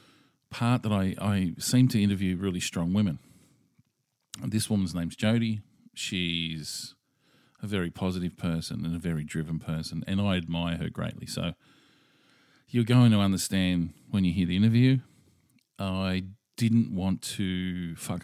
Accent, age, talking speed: Australian, 40-59, 145 wpm